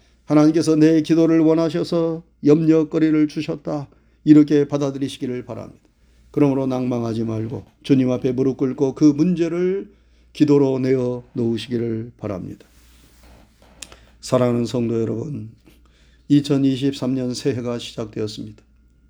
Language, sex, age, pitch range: Korean, male, 40-59, 115-155 Hz